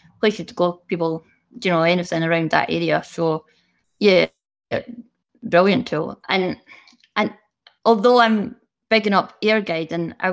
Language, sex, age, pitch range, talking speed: English, female, 20-39, 170-200 Hz, 140 wpm